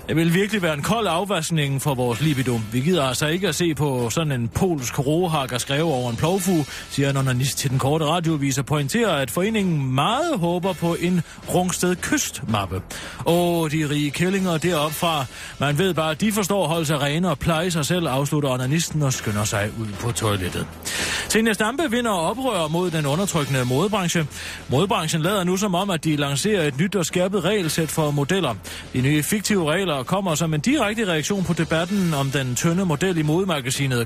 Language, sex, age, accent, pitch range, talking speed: Danish, male, 30-49, native, 135-185 Hz, 190 wpm